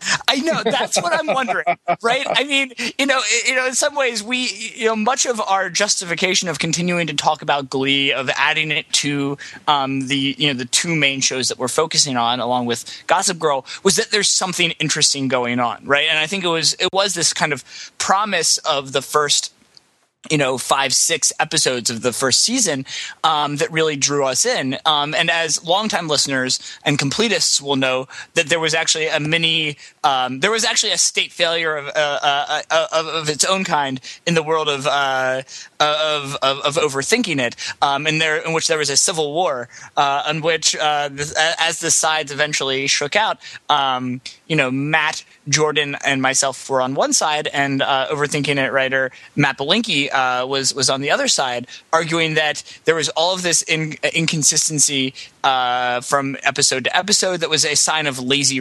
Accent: American